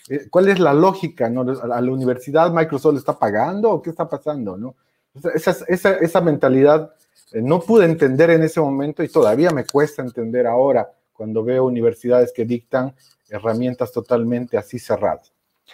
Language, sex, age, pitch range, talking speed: Spanish, male, 40-59, 125-170 Hz, 160 wpm